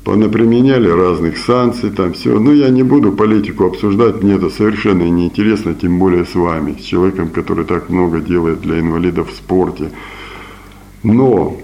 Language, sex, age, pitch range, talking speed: Russian, male, 50-69, 90-120 Hz, 155 wpm